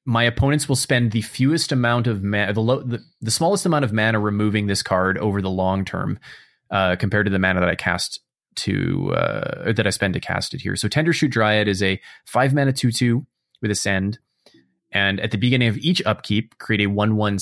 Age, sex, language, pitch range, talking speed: 30-49, male, English, 100-120 Hz, 220 wpm